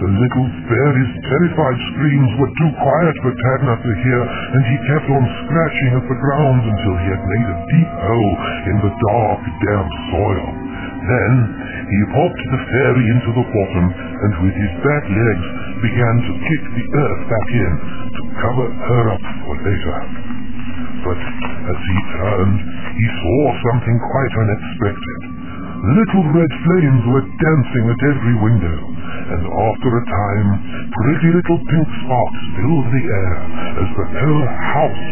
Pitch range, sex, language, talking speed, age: 100-140 Hz, female, English, 155 wpm, 60-79